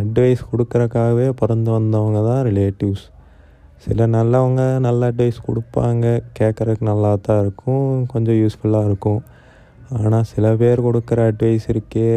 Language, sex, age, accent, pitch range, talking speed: Tamil, male, 20-39, native, 110-120 Hz, 120 wpm